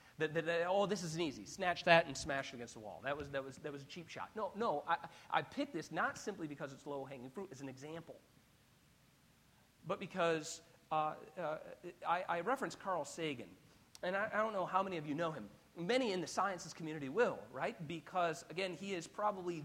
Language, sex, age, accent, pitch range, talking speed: English, male, 40-59, American, 140-175 Hz, 215 wpm